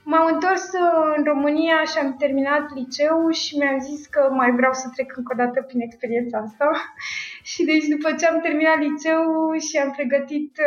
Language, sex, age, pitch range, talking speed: Romanian, female, 20-39, 250-305 Hz, 180 wpm